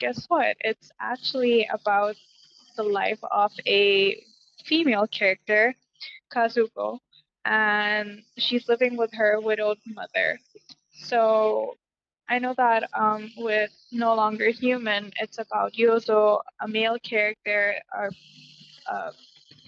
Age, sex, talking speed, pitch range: 10-29, female, 105 wpm, 210-245 Hz